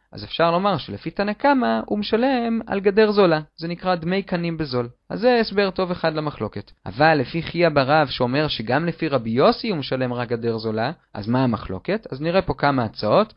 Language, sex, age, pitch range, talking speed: Hebrew, male, 30-49, 130-195 Hz, 200 wpm